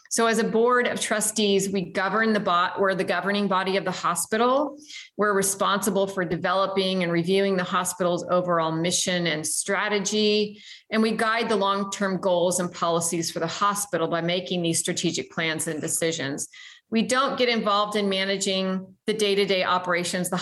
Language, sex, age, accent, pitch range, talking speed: English, female, 30-49, American, 180-215 Hz, 170 wpm